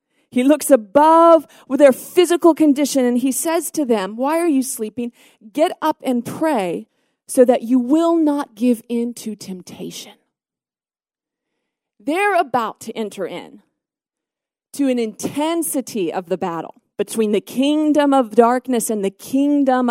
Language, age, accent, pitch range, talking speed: English, 40-59, American, 220-280 Hz, 145 wpm